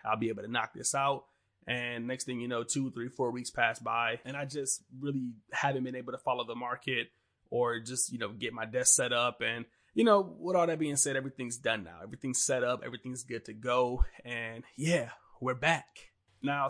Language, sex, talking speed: English, male, 220 wpm